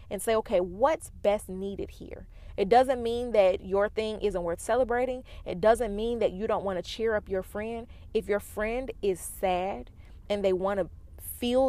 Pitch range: 185-240 Hz